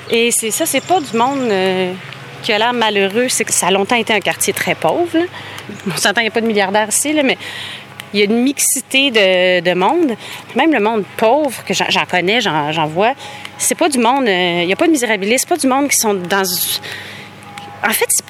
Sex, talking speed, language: female, 245 wpm, French